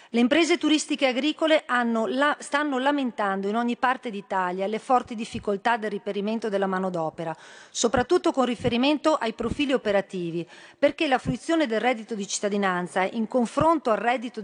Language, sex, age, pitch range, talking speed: Italian, female, 40-59, 205-270 Hz, 150 wpm